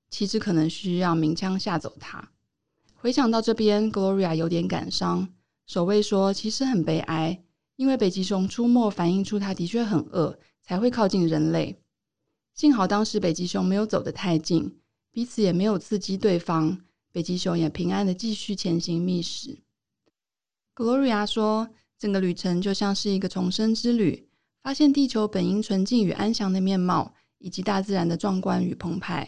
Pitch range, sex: 175-215 Hz, female